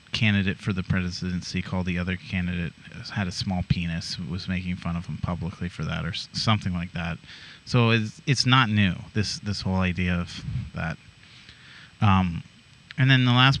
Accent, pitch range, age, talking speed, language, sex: American, 95-130 Hz, 30-49, 175 wpm, English, male